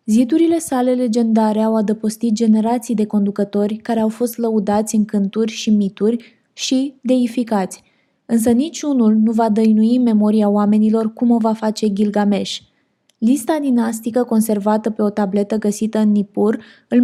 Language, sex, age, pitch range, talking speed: Romanian, female, 20-39, 210-240 Hz, 140 wpm